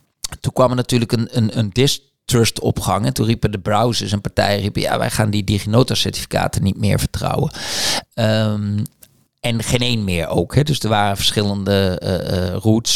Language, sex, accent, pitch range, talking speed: Dutch, male, Dutch, 100-125 Hz, 190 wpm